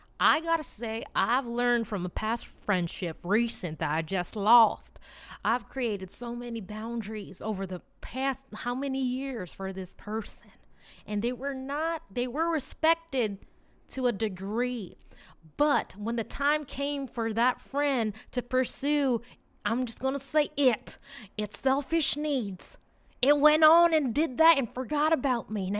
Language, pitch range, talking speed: English, 200-290 Hz, 160 wpm